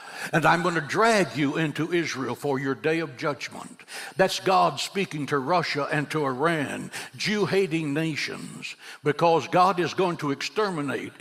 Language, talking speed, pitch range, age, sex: English, 150 wpm, 140-175 Hz, 60-79, male